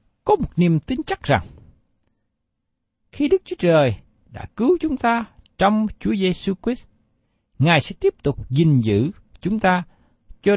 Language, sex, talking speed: Vietnamese, male, 155 wpm